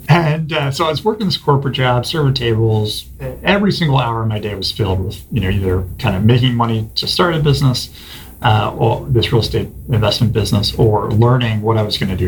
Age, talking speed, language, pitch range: 30-49, 225 wpm, English, 100-130 Hz